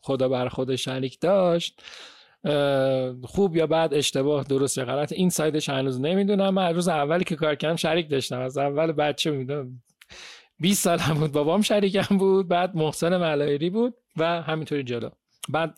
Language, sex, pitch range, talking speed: Persian, male, 130-170 Hz, 165 wpm